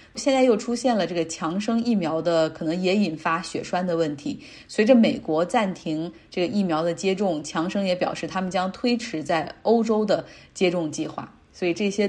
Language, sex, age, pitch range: Chinese, female, 30-49, 175-235 Hz